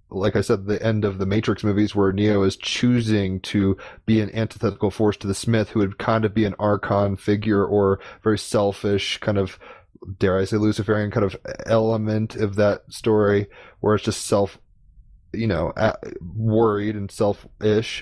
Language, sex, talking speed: English, male, 175 wpm